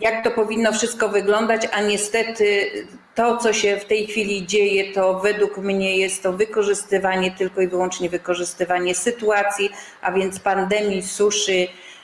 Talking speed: 145 wpm